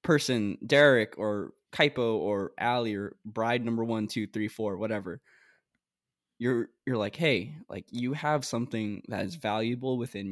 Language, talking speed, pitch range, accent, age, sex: English, 150 wpm, 110-130 Hz, American, 10-29, male